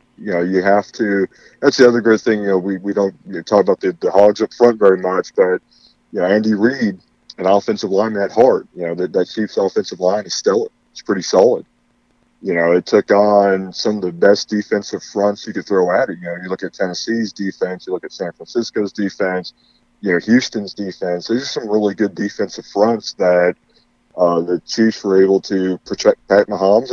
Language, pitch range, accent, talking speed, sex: English, 90-110 Hz, American, 220 wpm, male